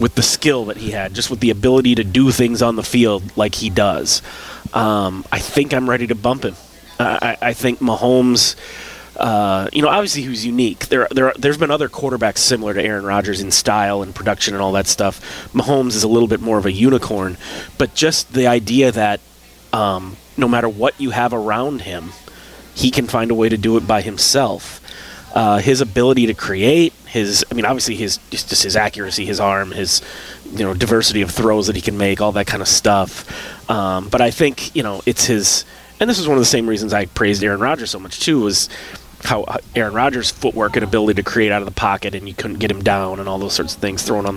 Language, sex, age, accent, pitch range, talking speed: English, male, 30-49, American, 100-125 Hz, 225 wpm